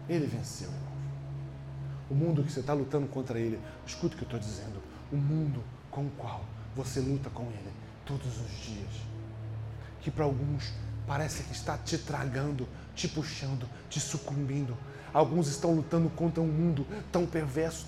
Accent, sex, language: Brazilian, male, Portuguese